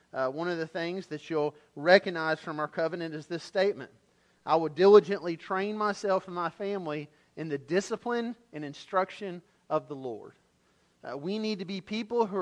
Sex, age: male, 40-59